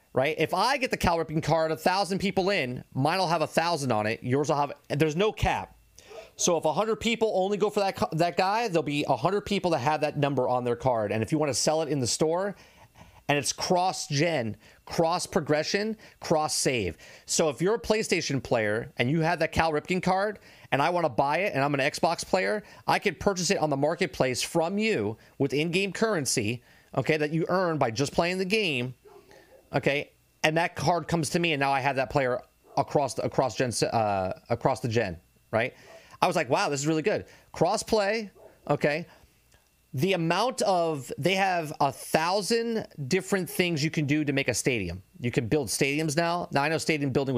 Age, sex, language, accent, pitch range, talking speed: 30-49, male, English, American, 130-175 Hz, 215 wpm